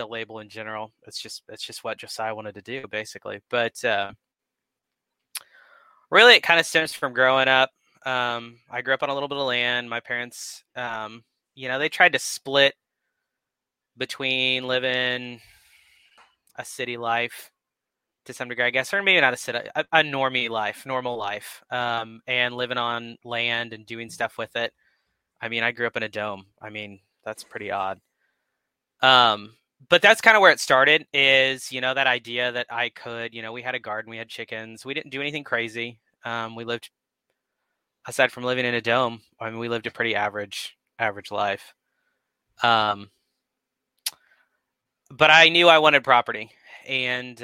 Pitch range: 110-130 Hz